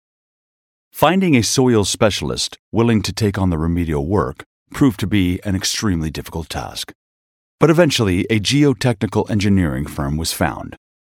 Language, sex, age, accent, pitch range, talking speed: English, male, 40-59, American, 85-115 Hz, 140 wpm